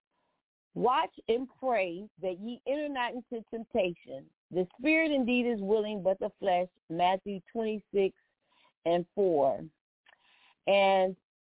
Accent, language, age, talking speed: American, English, 40-59, 115 wpm